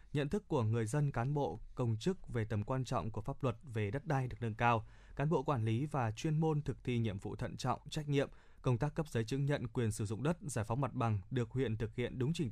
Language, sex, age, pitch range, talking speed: Vietnamese, male, 20-39, 115-140 Hz, 275 wpm